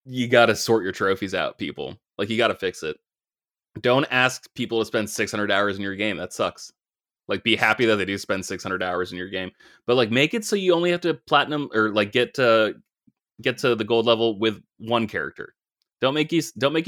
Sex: male